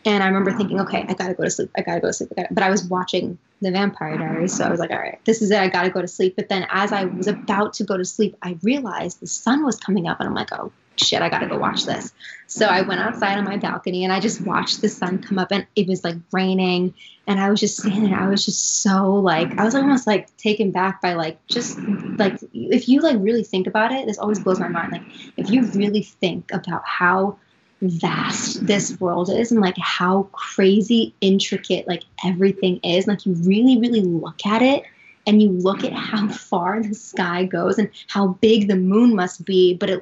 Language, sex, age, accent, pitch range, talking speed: English, female, 20-39, American, 185-215 Hz, 245 wpm